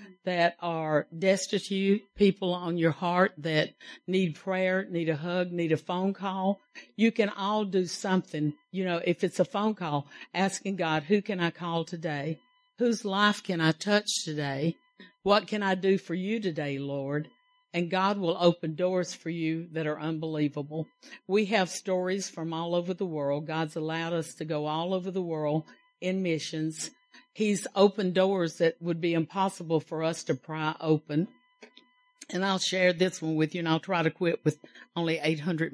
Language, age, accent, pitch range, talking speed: English, 60-79, American, 165-200 Hz, 180 wpm